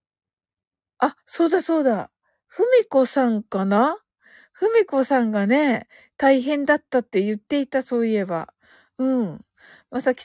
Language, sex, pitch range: Japanese, female, 210-300 Hz